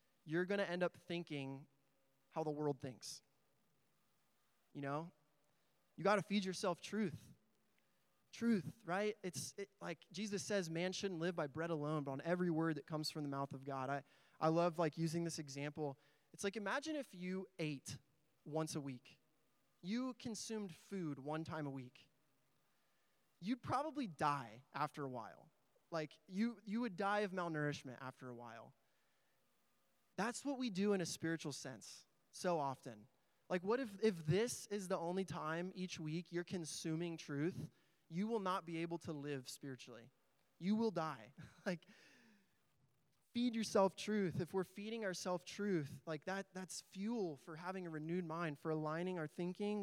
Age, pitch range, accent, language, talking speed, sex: 20-39, 145-190 Hz, American, English, 165 wpm, male